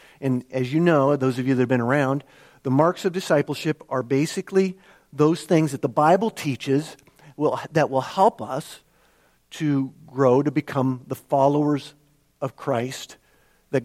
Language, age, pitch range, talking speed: English, 50-69, 125-180 Hz, 155 wpm